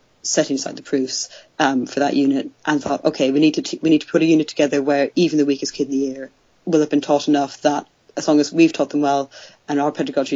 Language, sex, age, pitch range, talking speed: English, female, 30-49, 140-155 Hz, 265 wpm